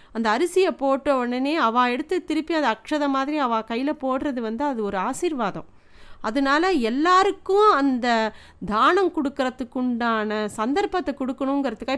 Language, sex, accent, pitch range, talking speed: Tamil, female, native, 240-310 Hz, 120 wpm